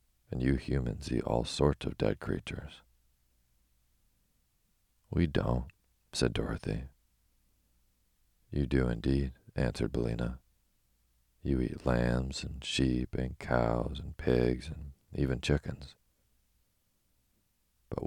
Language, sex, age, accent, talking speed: English, male, 40-59, American, 105 wpm